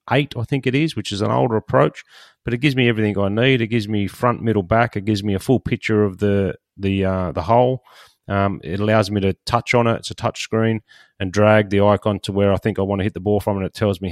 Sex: male